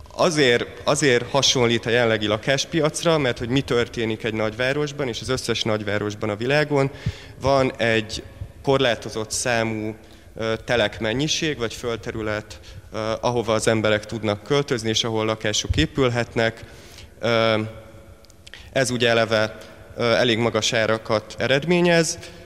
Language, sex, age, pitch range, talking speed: Hungarian, male, 30-49, 110-125 Hz, 110 wpm